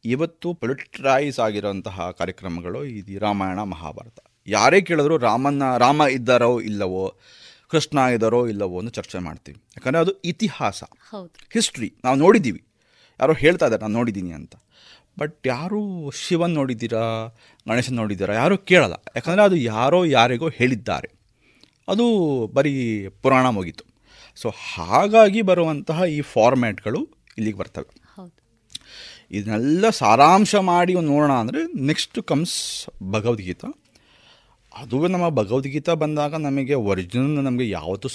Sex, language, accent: male, Kannada, native